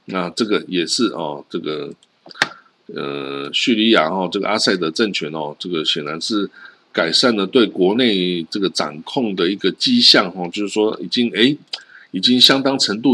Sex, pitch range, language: male, 95-120 Hz, Chinese